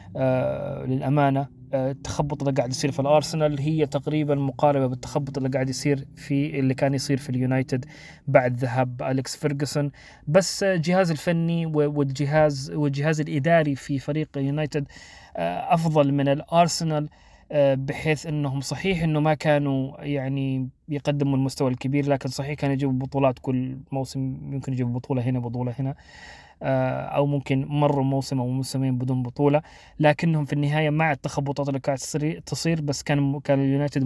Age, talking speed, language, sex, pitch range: 20-39, 150 wpm, Arabic, male, 135-150 Hz